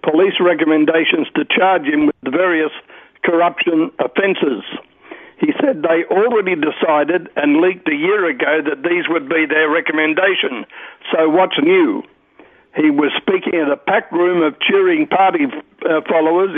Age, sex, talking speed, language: 60-79, male, 140 wpm, English